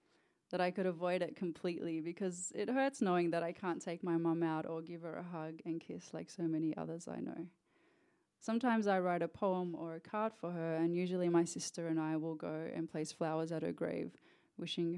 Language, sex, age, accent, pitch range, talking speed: English, female, 20-39, Australian, 160-185 Hz, 220 wpm